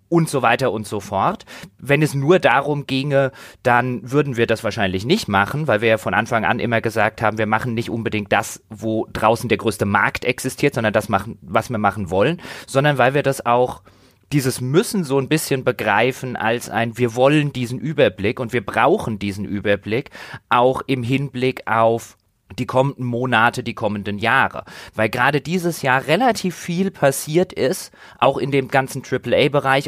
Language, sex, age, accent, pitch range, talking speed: German, male, 30-49, German, 115-140 Hz, 180 wpm